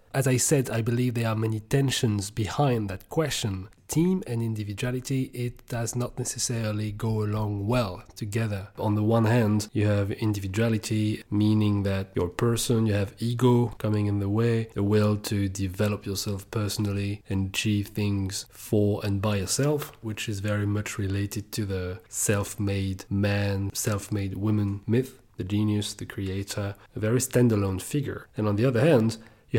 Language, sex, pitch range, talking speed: English, male, 100-115 Hz, 165 wpm